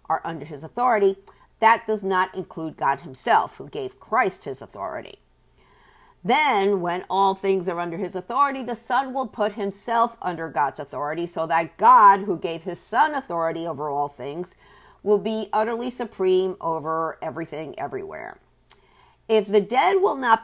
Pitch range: 170-220 Hz